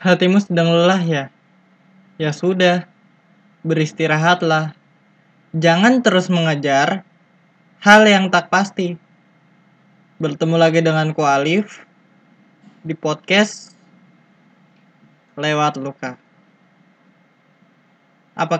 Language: Indonesian